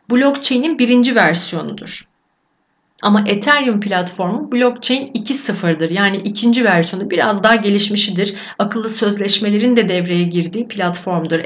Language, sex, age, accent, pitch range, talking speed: Turkish, female, 40-59, native, 200-270 Hz, 105 wpm